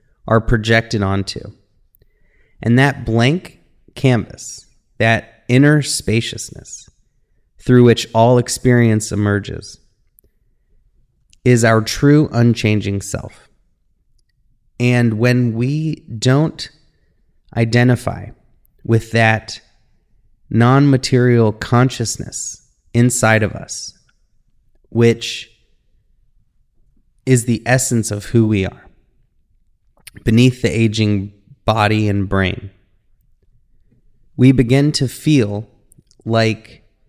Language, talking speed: English, 85 wpm